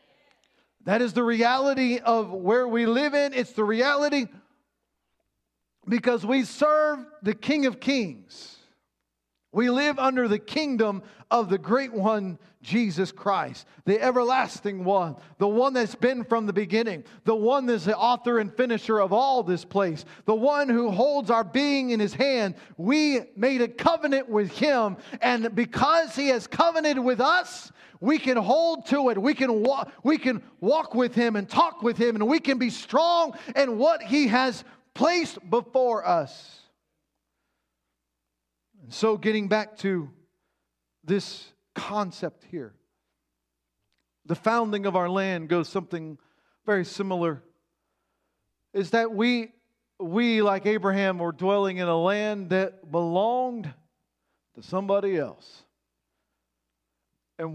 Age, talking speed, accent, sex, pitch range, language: 40-59, 140 wpm, American, male, 180-250 Hz, English